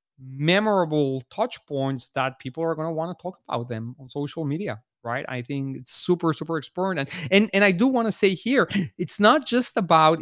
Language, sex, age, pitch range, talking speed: English, male, 30-49, 145-190 Hz, 210 wpm